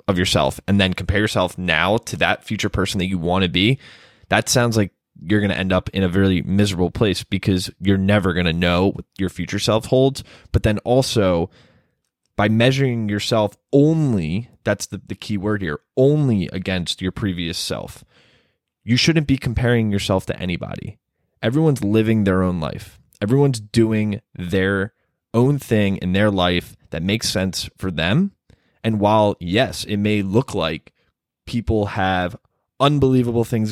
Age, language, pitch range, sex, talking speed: 20-39, English, 95-120 Hz, male, 165 wpm